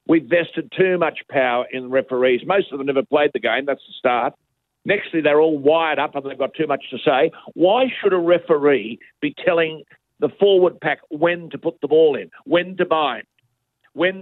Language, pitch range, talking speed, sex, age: English, 140-185 Hz, 205 wpm, male, 50-69